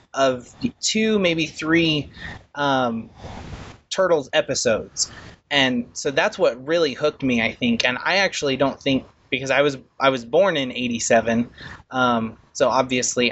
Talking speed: 150 wpm